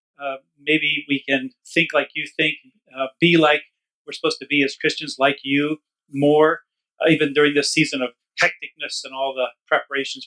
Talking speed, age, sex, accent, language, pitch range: 180 wpm, 40-59, male, American, English, 145-190 Hz